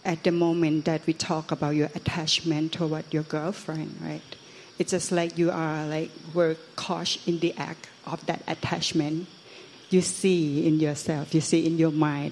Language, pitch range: Thai, 145-165 Hz